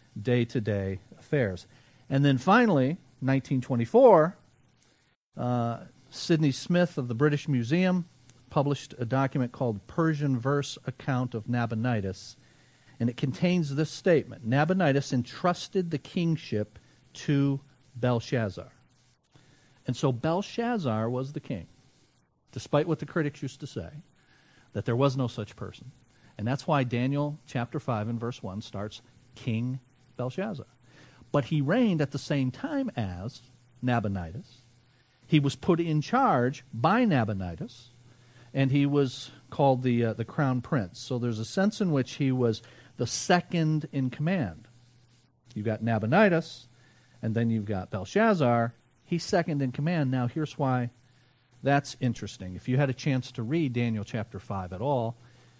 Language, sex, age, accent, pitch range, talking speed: English, male, 50-69, American, 120-145 Hz, 140 wpm